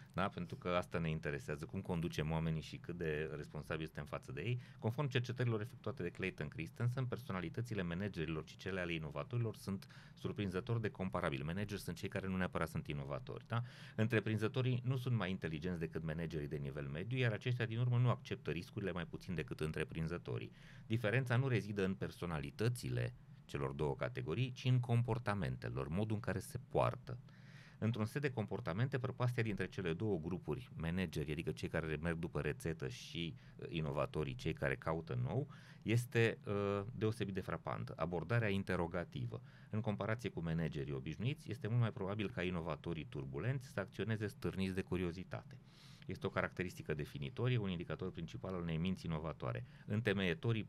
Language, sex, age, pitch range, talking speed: Romanian, male, 30-49, 85-120 Hz, 165 wpm